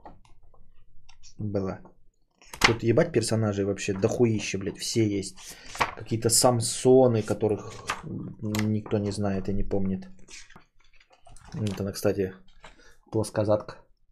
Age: 20-39